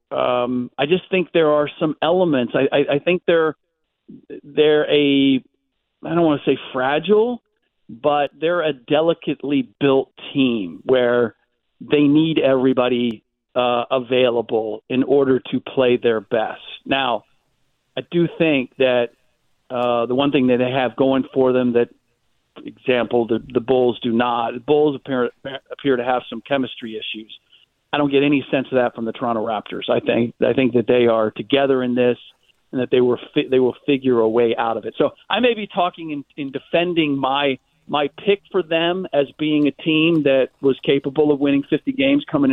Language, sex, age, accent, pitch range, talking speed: English, male, 50-69, American, 120-150 Hz, 185 wpm